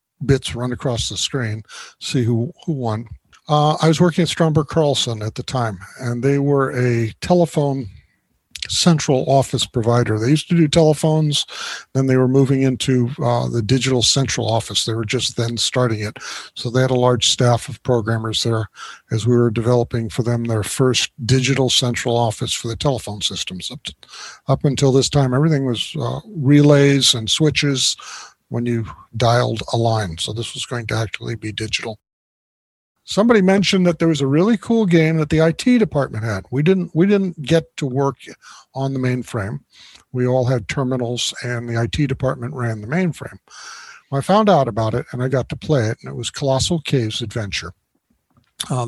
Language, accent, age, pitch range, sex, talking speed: English, American, 50-69, 115-145 Hz, male, 185 wpm